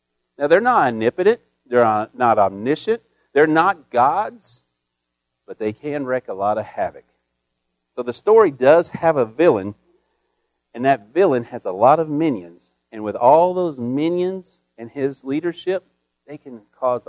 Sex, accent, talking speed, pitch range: male, American, 155 wpm, 110-165 Hz